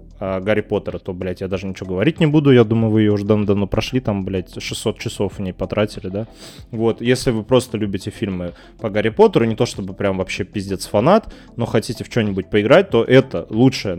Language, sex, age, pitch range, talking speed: Russian, male, 20-39, 100-125 Hz, 220 wpm